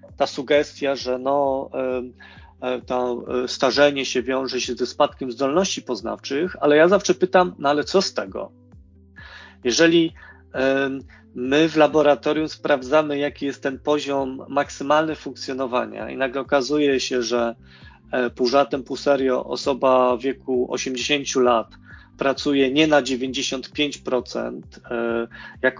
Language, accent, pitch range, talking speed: Polish, native, 125-145 Hz, 120 wpm